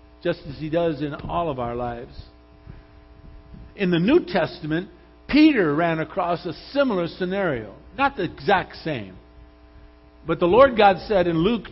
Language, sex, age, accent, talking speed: English, male, 50-69, American, 155 wpm